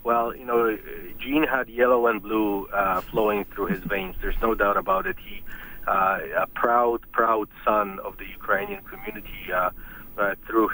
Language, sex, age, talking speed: English, male, 40-59, 175 wpm